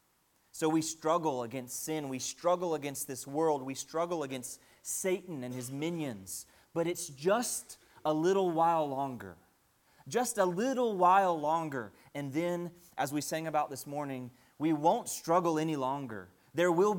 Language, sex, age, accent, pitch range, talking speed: English, male, 30-49, American, 130-170 Hz, 155 wpm